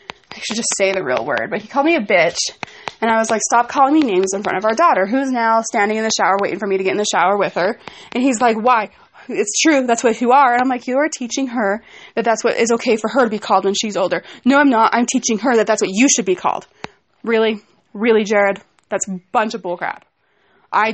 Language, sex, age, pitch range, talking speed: English, female, 20-39, 205-260 Hz, 270 wpm